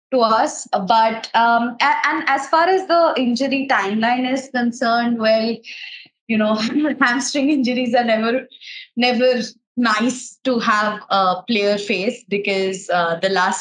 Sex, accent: female, Indian